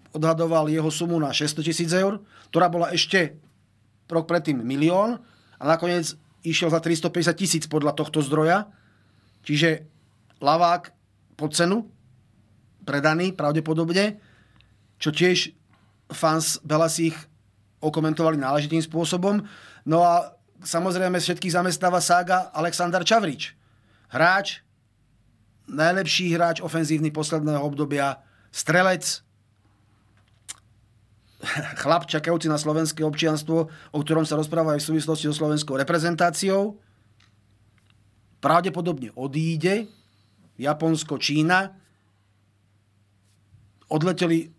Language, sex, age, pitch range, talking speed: Slovak, male, 30-49, 110-170 Hz, 95 wpm